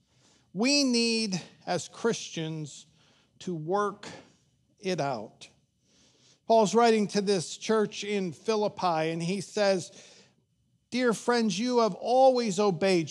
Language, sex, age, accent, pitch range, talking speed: English, male, 50-69, American, 175-230 Hz, 110 wpm